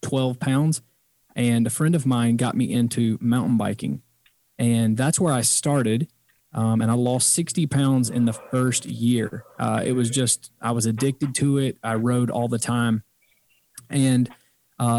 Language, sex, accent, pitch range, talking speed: English, male, American, 115-135 Hz, 170 wpm